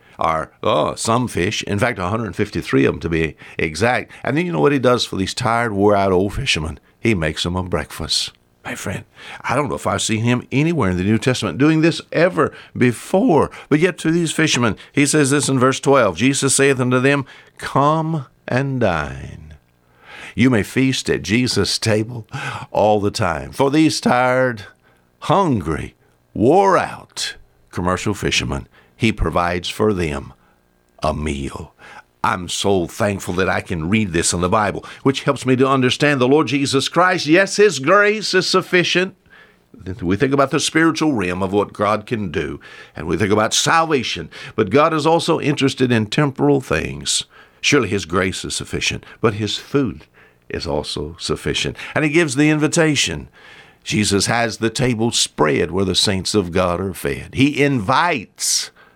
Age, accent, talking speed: 60-79, American, 170 wpm